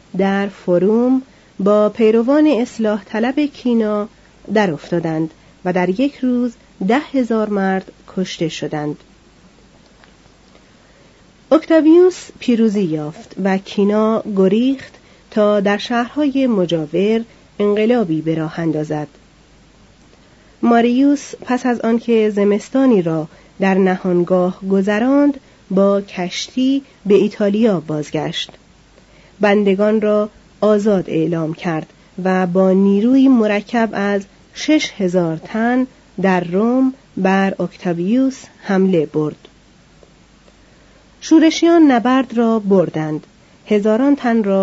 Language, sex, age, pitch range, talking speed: Persian, female, 40-59, 185-235 Hz, 95 wpm